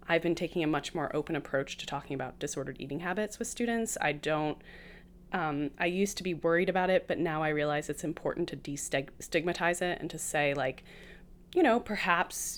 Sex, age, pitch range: female, 20-39, 150-190 Hz